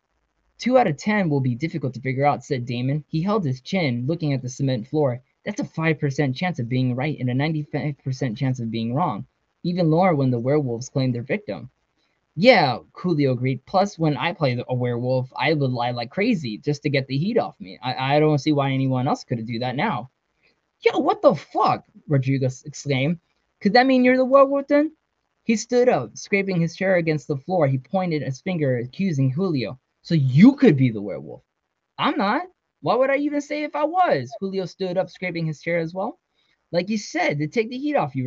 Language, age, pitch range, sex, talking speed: English, 10-29, 130-190 Hz, male, 215 wpm